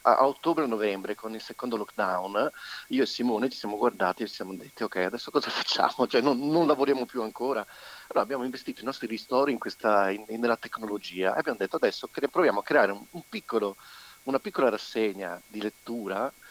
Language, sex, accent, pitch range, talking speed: Italian, male, native, 105-150 Hz, 195 wpm